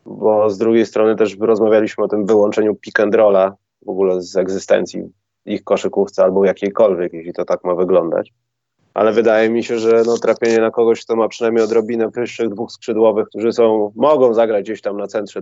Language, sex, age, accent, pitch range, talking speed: Polish, male, 30-49, native, 105-130 Hz, 185 wpm